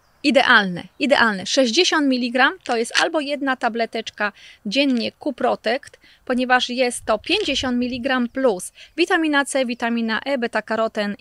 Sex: female